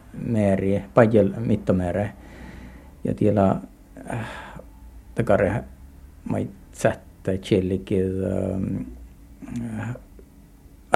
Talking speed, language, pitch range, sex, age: 75 wpm, Finnish, 95-110 Hz, male, 60-79